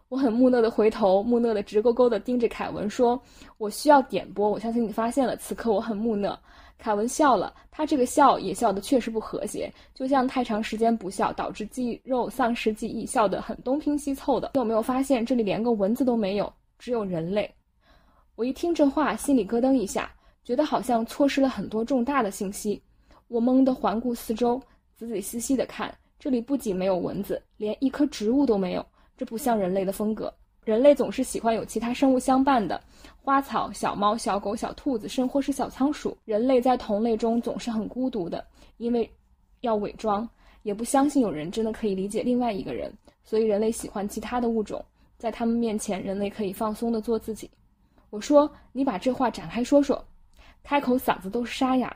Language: Chinese